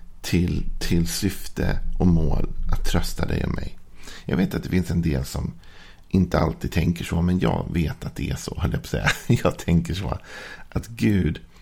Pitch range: 80-90 Hz